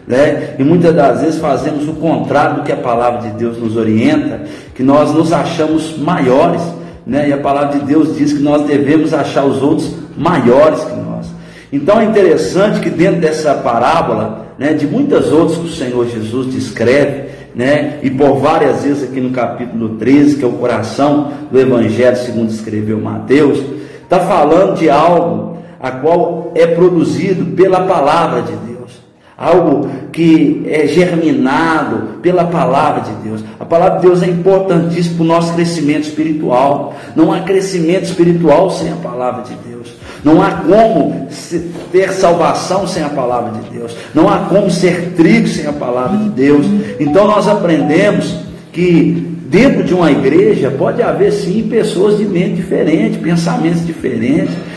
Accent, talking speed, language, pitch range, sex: Brazilian, 160 wpm, Portuguese, 140-175 Hz, male